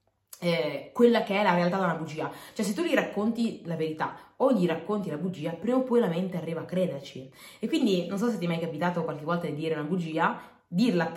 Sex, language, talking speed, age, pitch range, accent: female, Italian, 240 wpm, 20-39, 150-205 Hz, native